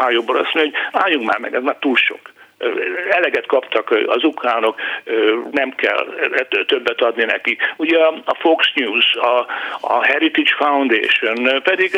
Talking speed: 135 wpm